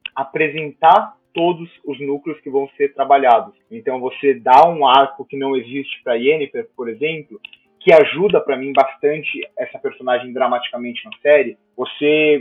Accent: Brazilian